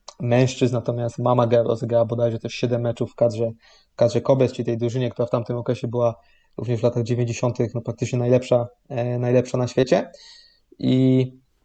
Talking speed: 160 wpm